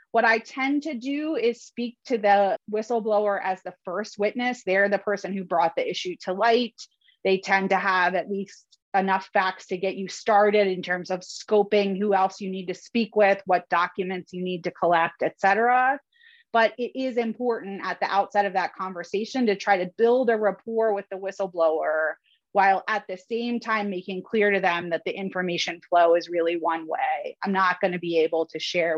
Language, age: English, 30-49